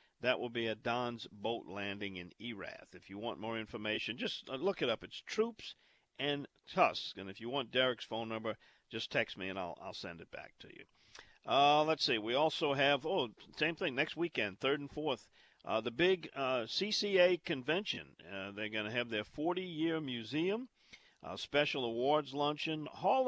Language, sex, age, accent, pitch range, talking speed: English, male, 50-69, American, 110-145 Hz, 185 wpm